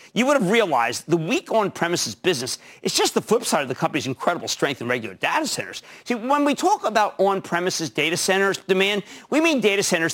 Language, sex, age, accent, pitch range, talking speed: English, male, 50-69, American, 155-225 Hz, 205 wpm